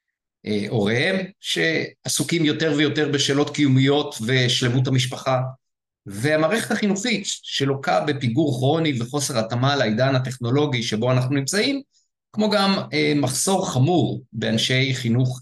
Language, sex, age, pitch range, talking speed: Hebrew, male, 50-69, 125-180 Hz, 100 wpm